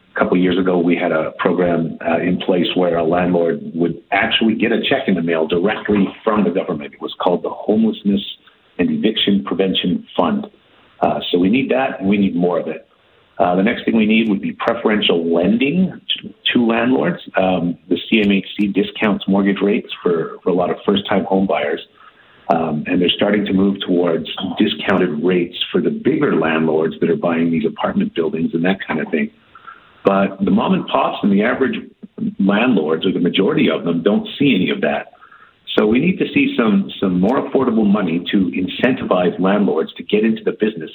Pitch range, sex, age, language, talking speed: 85-115 Hz, male, 50-69, English, 190 wpm